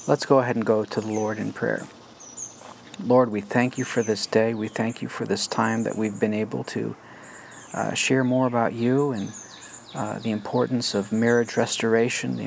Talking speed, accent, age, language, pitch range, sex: 195 wpm, American, 50-69, English, 110-125 Hz, male